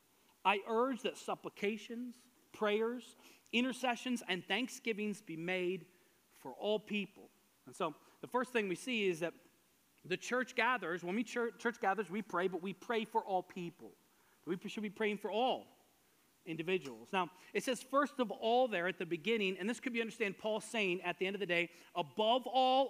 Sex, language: male, English